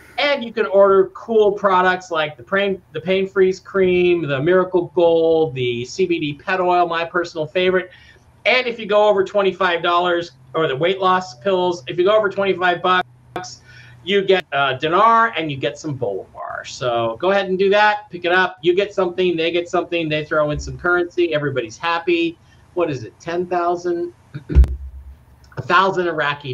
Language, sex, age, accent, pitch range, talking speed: English, male, 40-59, American, 125-185 Hz, 175 wpm